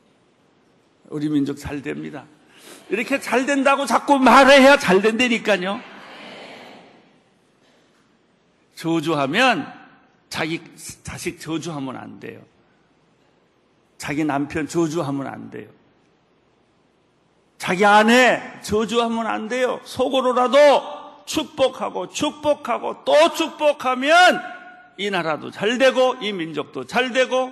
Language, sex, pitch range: Korean, male, 170-270 Hz